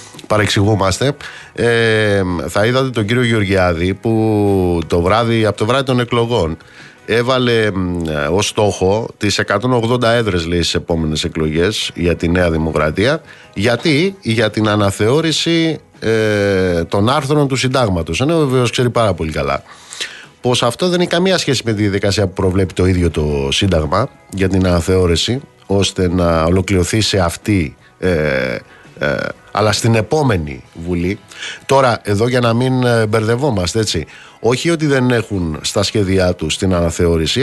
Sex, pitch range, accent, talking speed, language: male, 90-125 Hz, native, 135 wpm, Greek